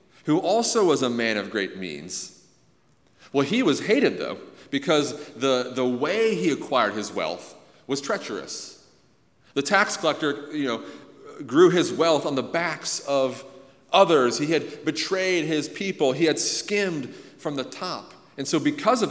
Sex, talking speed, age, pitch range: male, 160 wpm, 40-59, 110-150 Hz